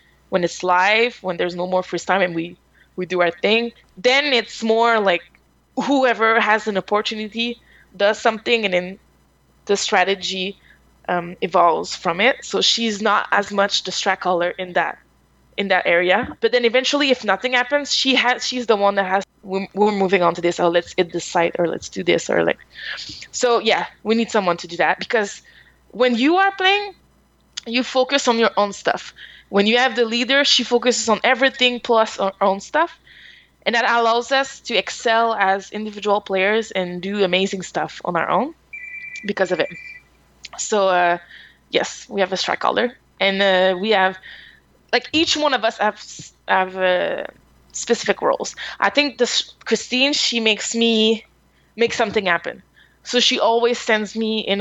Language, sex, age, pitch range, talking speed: English, female, 20-39, 185-240 Hz, 180 wpm